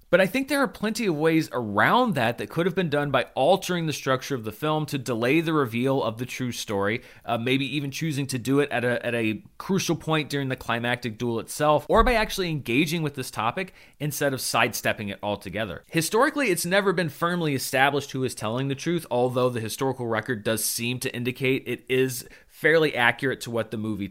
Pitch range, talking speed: 120-160 Hz, 215 wpm